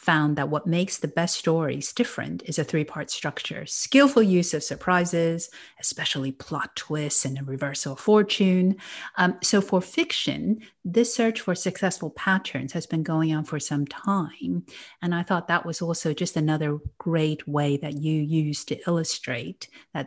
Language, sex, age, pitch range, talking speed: English, female, 50-69, 150-195 Hz, 165 wpm